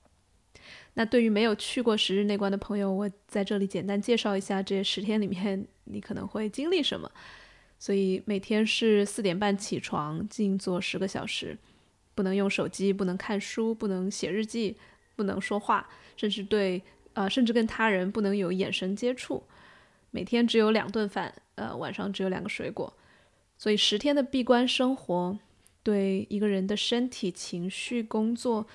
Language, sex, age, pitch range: Chinese, female, 20-39, 195-225 Hz